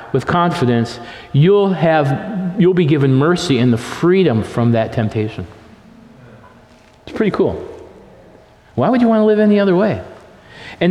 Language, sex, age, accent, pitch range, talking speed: English, male, 50-69, American, 145-205 Hz, 150 wpm